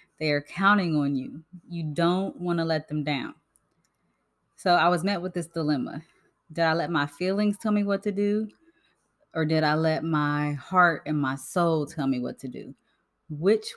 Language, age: English, 20-39